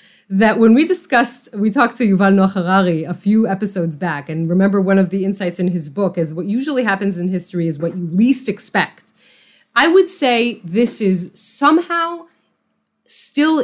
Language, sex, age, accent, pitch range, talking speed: English, female, 30-49, American, 170-230 Hz, 180 wpm